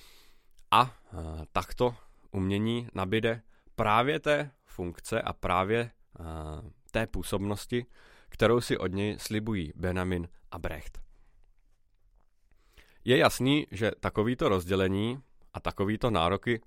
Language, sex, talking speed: Czech, male, 95 wpm